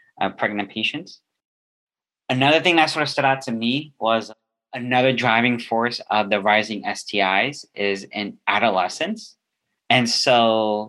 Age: 30-49